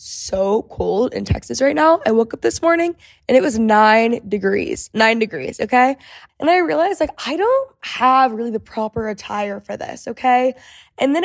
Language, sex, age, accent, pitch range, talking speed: English, female, 10-29, American, 205-260 Hz, 185 wpm